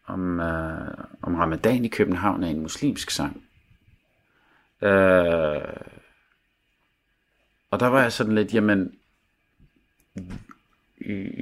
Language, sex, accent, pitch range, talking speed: Danish, male, native, 85-105 Hz, 100 wpm